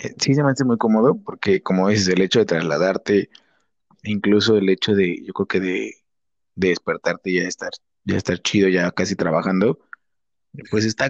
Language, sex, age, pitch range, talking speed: Spanish, male, 30-49, 100-120 Hz, 195 wpm